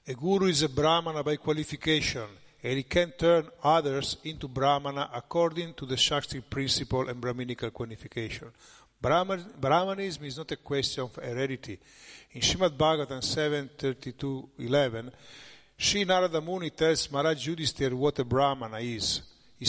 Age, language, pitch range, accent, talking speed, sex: 50-69, Italian, 125-150 Hz, native, 135 wpm, male